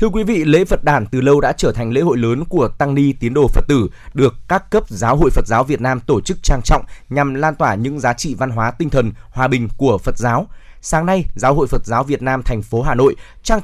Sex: male